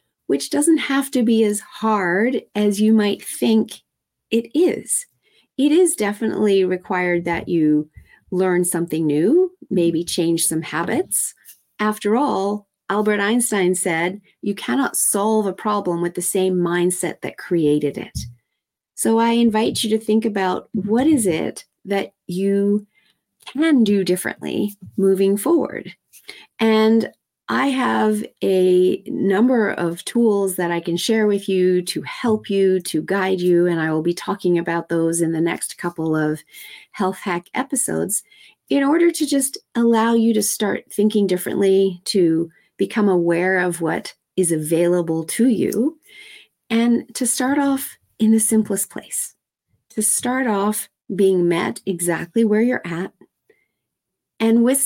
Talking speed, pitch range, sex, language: 145 wpm, 175-230 Hz, female, English